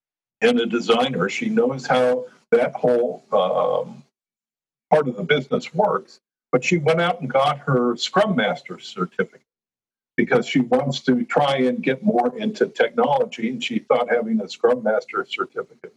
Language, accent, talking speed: English, American, 160 wpm